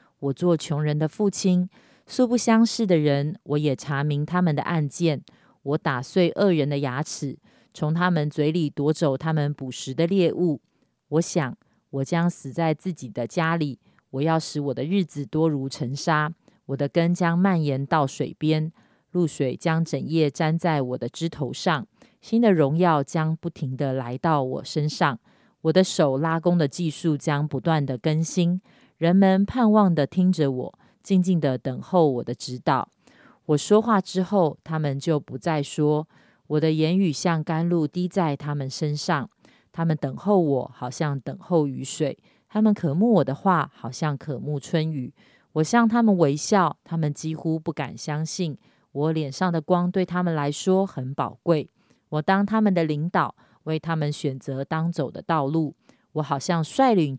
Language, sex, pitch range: Chinese, female, 145-175 Hz